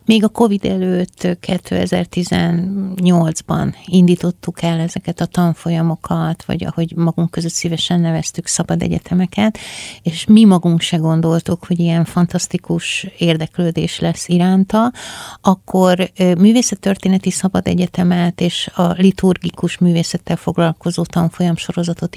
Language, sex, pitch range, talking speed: Hungarian, female, 170-195 Hz, 110 wpm